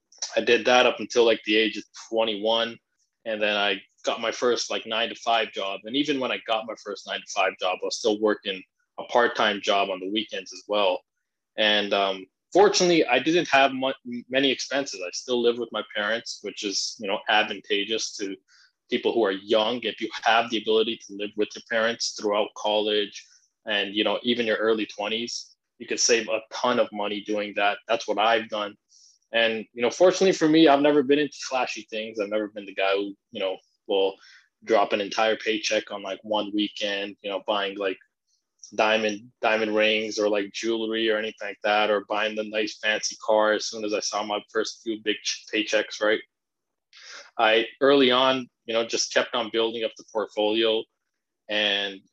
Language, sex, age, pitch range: English, male, 20-39, 105-120 Hz